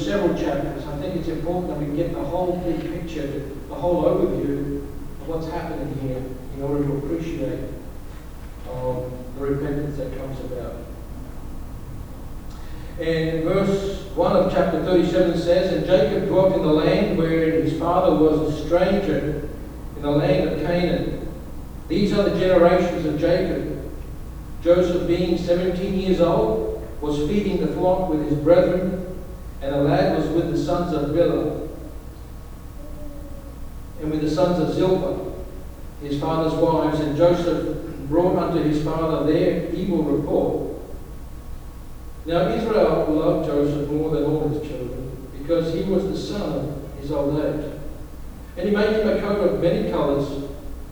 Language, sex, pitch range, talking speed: English, male, 145-175 Hz, 150 wpm